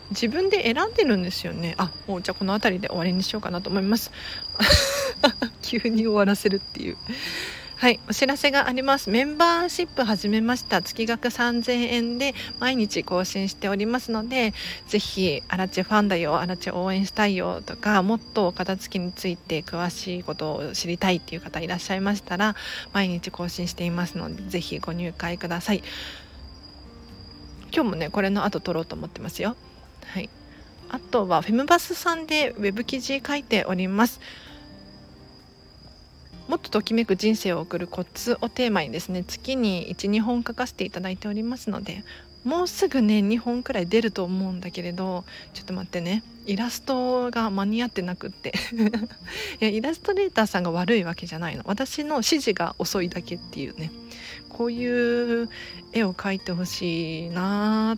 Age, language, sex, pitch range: 40-59, Japanese, female, 180-235 Hz